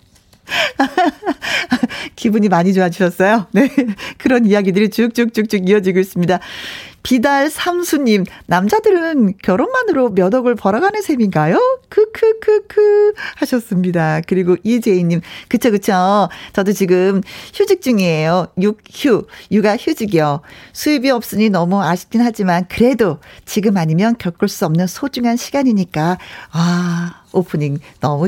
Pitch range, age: 185-265 Hz, 40-59